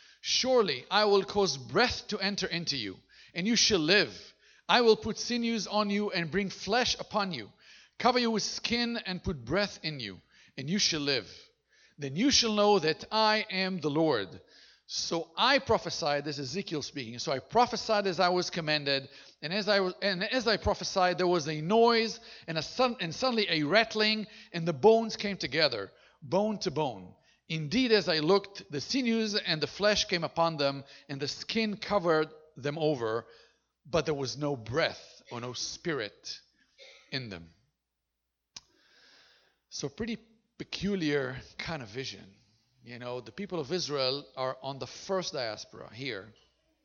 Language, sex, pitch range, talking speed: English, male, 135-210 Hz, 170 wpm